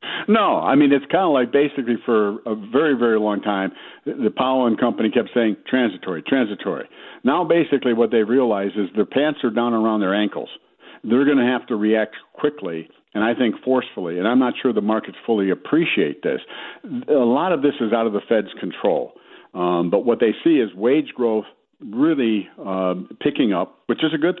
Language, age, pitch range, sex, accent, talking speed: English, 60-79, 105-130 Hz, male, American, 200 wpm